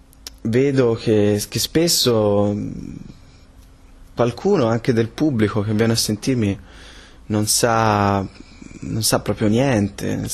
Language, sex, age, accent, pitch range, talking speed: Italian, male, 20-39, native, 95-110 Hz, 110 wpm